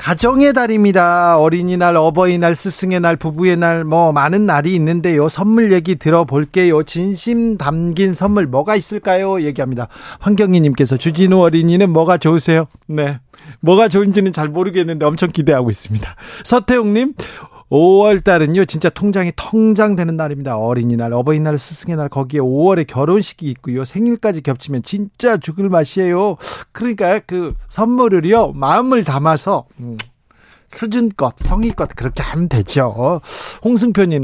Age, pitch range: 40-59, 145-195 Hz